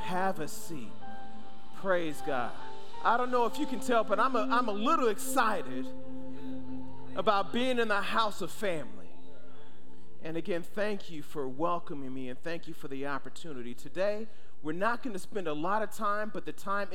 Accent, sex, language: American, male, English